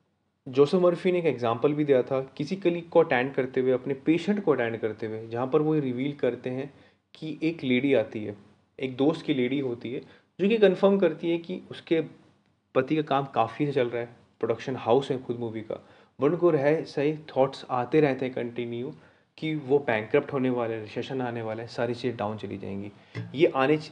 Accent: native